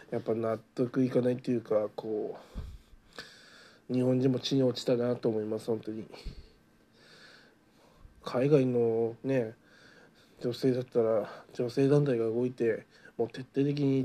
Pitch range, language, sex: 115-135 Hz, Japanese, male